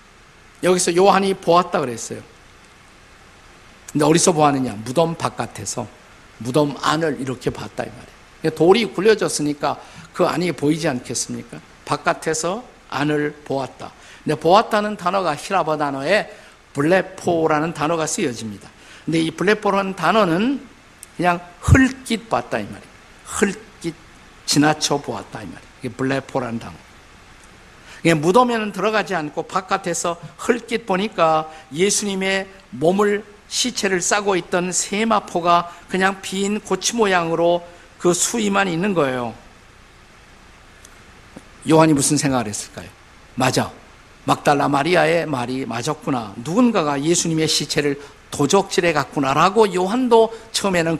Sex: male